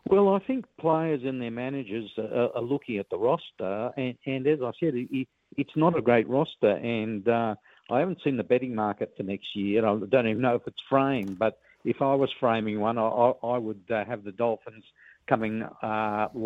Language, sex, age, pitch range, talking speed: English, male, 50-69, 105-130 Hz, 195 wpm